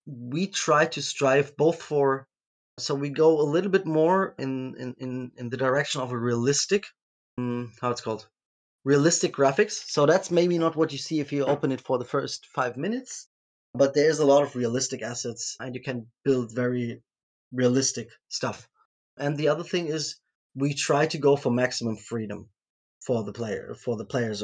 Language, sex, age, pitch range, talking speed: English, male, 20-39, 125-150 Hz, 175 wpm